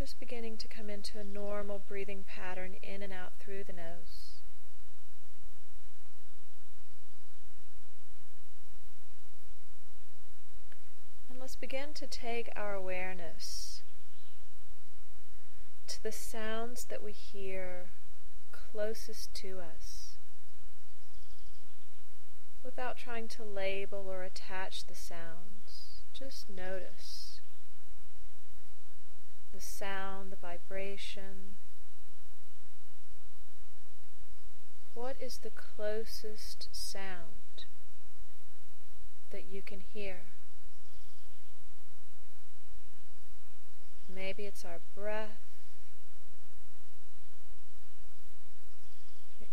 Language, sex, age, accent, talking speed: English, female, 30-49, American, 70 wpm